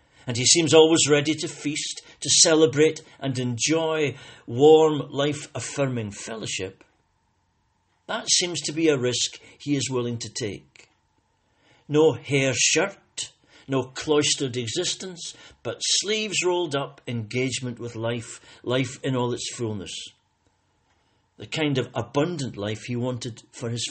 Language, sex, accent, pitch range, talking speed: English, male, British, 115-150 Hz, 130 wpm